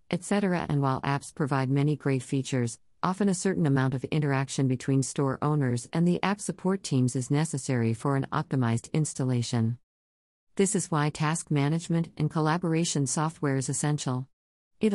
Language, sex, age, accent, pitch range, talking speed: English, female, 50-69, American, 130-160 Hz, 155 wpm